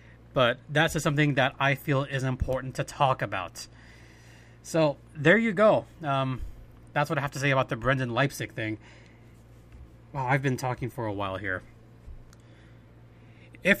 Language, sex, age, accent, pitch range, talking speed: English, male, 30-49, American, 120-160 Hz, 165 wpm